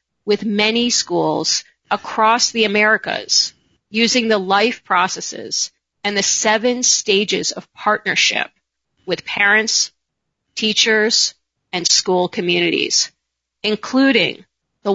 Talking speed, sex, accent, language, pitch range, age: 95 wpm, female, American, English, 195-225 Hz, 30-49